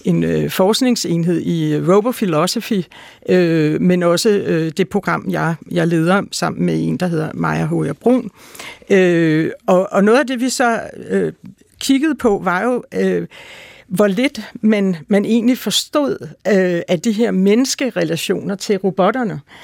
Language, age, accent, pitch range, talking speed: Danish, 60-79, native, 175-235 Hz, 150 wpm